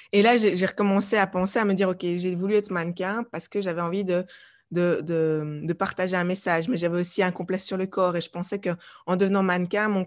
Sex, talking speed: female, 255 wpm